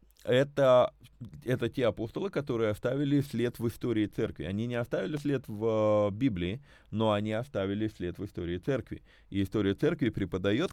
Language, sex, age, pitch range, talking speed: Russian, male, 30-49, 100-125 Hz, 150 wpm